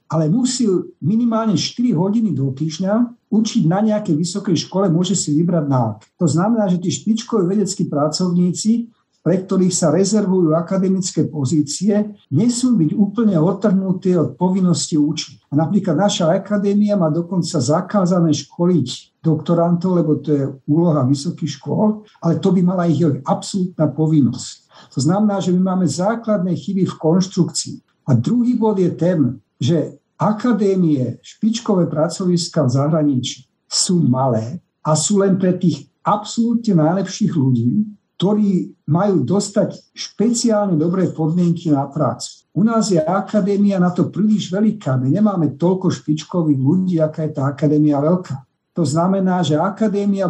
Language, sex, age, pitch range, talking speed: Slovak, male, 60-79, 155-200 Hz, 140 wpm